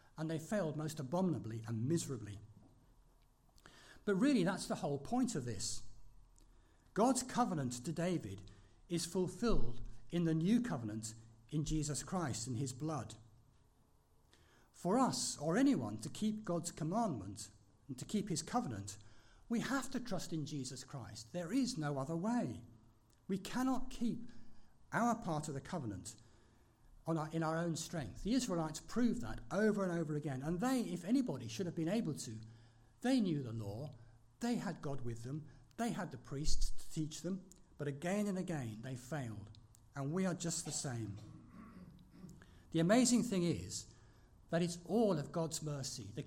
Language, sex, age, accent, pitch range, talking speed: English, male, 60-79, British, 115-190 Hz, 160 wpm